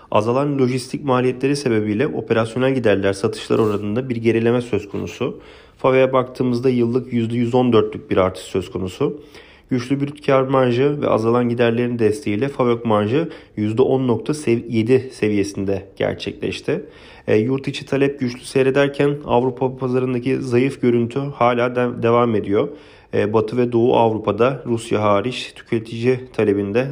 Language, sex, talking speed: Turkish, male, 120 wpm